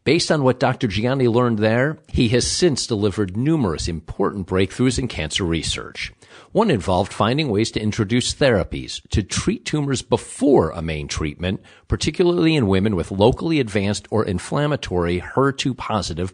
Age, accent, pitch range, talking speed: 50-69, American, 90-130 Hz, 145 wpm